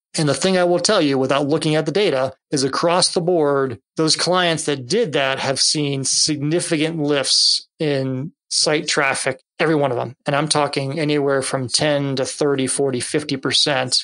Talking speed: 175 wpm